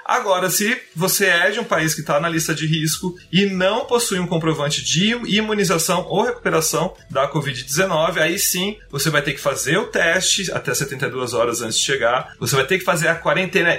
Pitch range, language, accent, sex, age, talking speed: 150-190 Hz, Portuguese, Brazilian, male, 30-49, 200 wpm